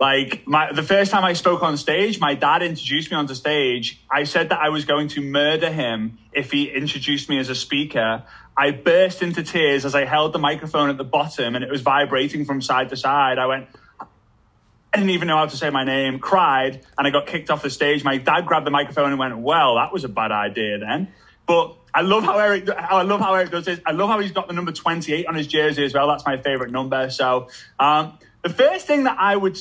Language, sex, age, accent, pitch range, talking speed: English, male, 20-39, British, 135-180 Hz, 235 wpm